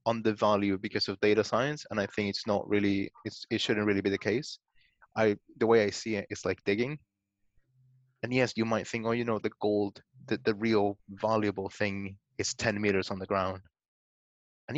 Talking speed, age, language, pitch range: 205 wpm, 20-39, English, 100-115 Hz